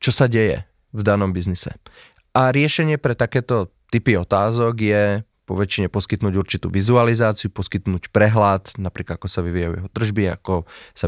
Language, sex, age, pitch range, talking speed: Czech, male, 30-49, 100-120 Hz, 145 wpm